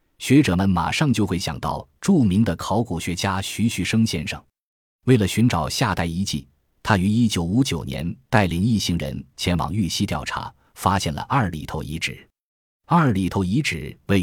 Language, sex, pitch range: Chinese, male, 85-110 Hz